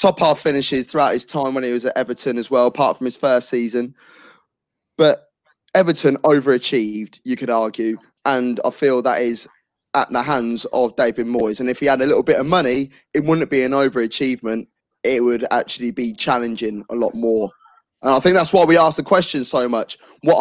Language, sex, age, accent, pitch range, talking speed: English, male, 20-39, British, 125-160 Hz, 205 wpm